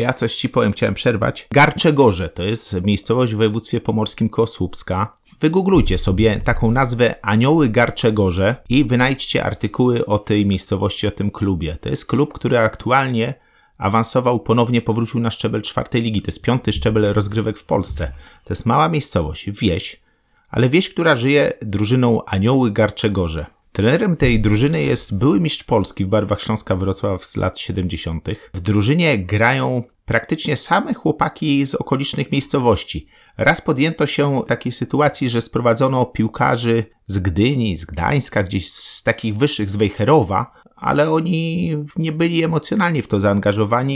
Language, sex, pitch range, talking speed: Polish, male, 105-135 Hz, 150 wpm